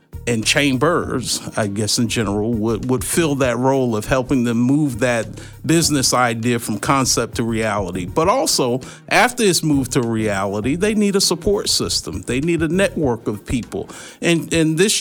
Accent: American